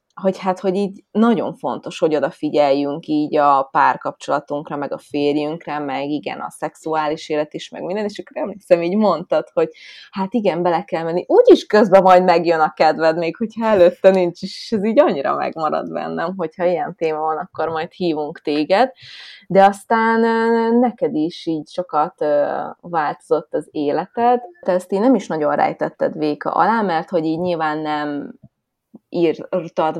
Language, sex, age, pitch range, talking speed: Hungarian, female, 20-39, 155-195 Hz, 165 wpm